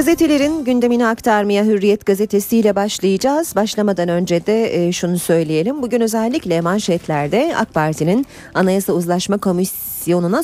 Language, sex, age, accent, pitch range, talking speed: Turkish, female, 40-59, native, 160-255 Hz, 115 wpm